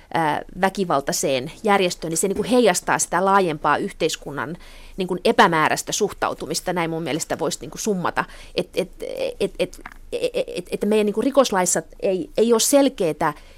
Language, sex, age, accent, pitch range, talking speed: Finnish, female, 30-49, native, 170-225 Hz, 95 wpm